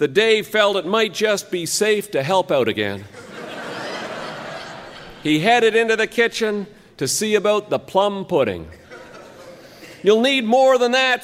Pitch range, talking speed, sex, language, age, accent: 170-225 Hz, 150 wpm, male, English, 50-69, American